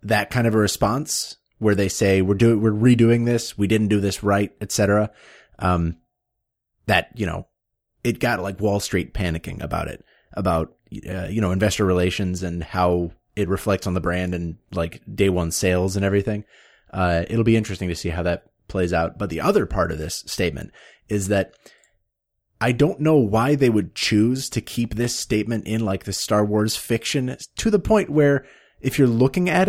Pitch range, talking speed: 95-120 Hz, 195 wpm